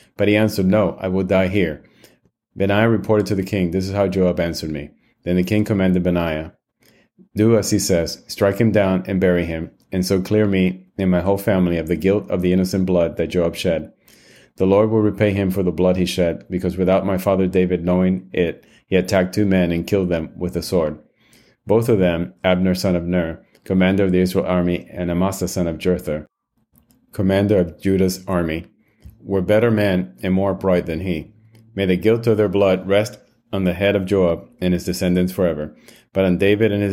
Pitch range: 90-100 Hz